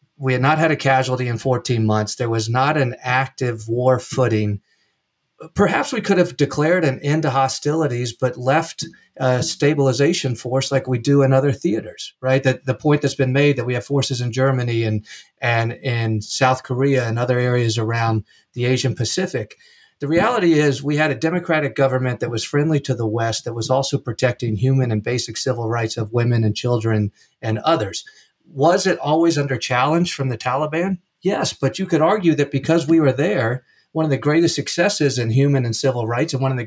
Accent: American